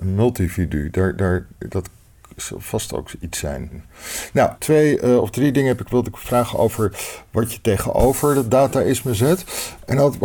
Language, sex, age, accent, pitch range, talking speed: Dutch, male, 50-69, Dutch, 100-130 Hz, 175 wpm